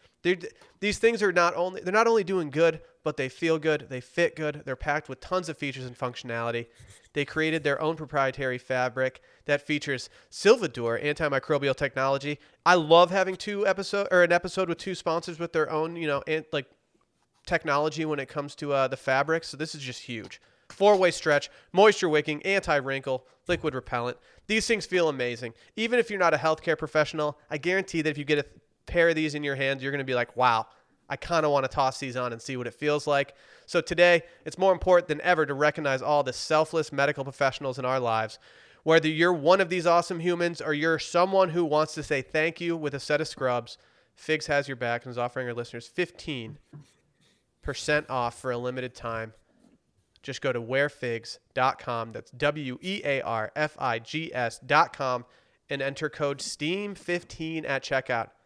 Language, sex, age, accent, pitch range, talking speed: English, male, 30-49, American, 130-170 Hz, 190 wpm